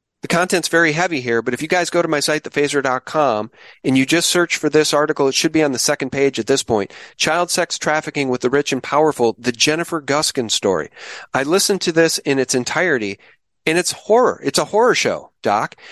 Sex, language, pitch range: male, English, 140-180 Hz